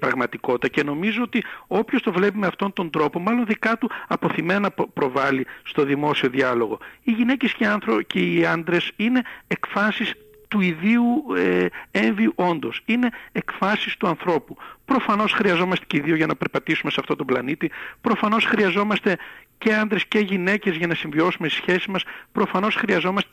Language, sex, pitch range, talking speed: Greek, male, 165-220 Hz, 155 wpm